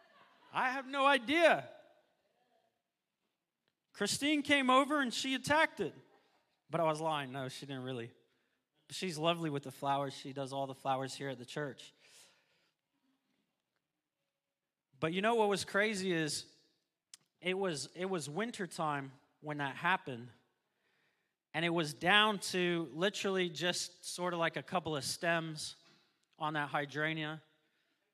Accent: American